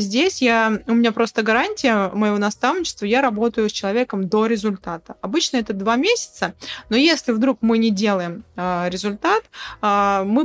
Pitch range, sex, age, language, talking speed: 195-230 Hz, female, 20-39, Russian, 145 wpm